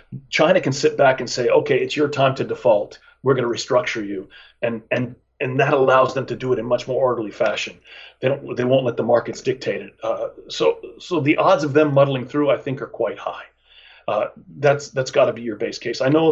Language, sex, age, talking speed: English, male, 40-59, 240 wpm